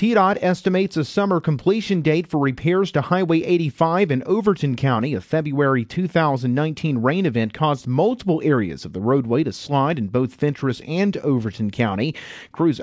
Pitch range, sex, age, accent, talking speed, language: 125-165 Hz, male, 40-59, American, 160 wpm, English